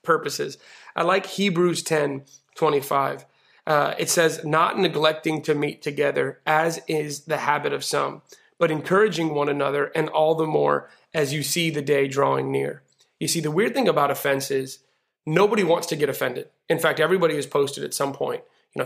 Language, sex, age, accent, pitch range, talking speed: English, male, 30-49, American, 140-175 Hz, 185 wpm